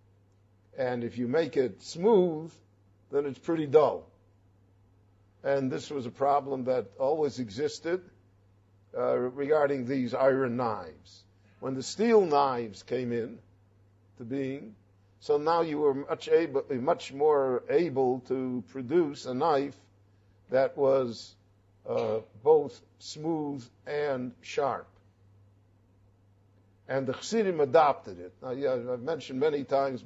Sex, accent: male, American